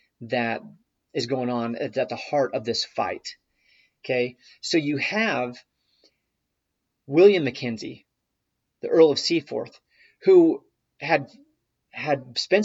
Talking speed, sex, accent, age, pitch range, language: 115 wpm, male, American, 30-49, 120-145 Hz, English